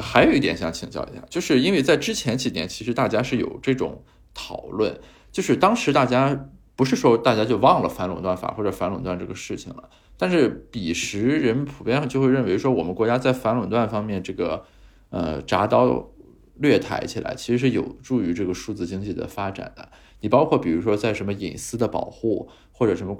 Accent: native